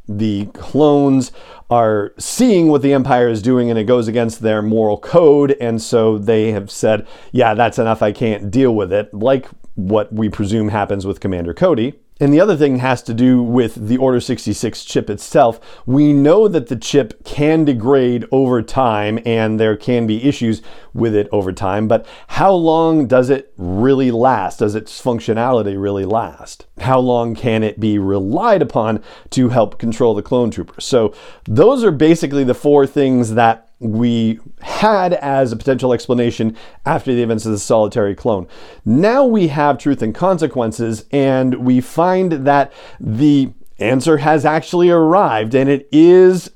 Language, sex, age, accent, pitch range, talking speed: English, male, 40-59, American, 110-145 Hz, 170 wpm